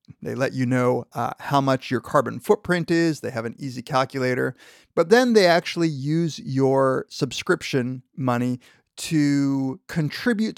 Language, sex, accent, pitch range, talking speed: English, male, American, 125-155 Hz, 150 wpm